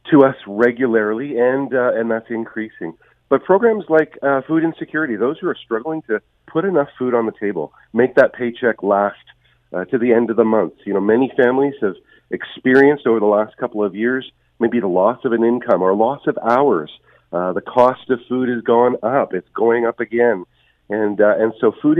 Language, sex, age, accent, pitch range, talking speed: English, male, 40-59, American, 110-130 Hz, 205 wpm